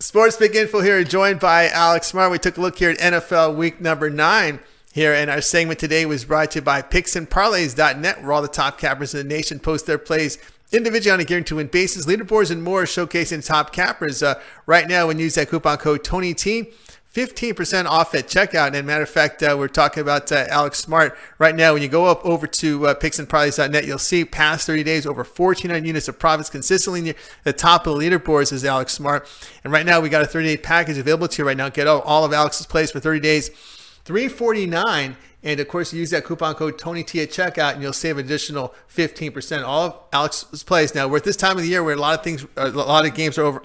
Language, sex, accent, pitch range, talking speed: English, male, American, 150-170 Hz, 235 wpm